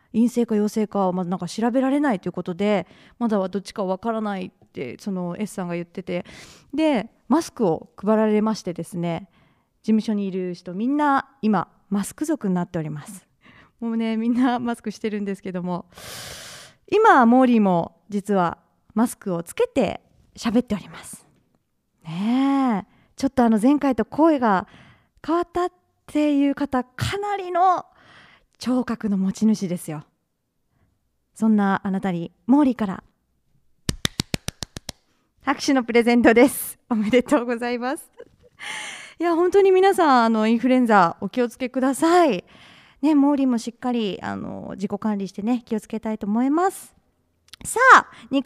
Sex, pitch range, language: female, 200-275 Hz, Japanese